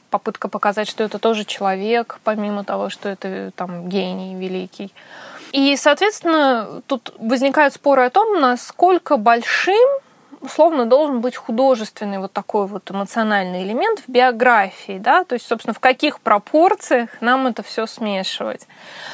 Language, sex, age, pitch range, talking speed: Russian, female, 20-39, 205-275 Hz, 135 wpm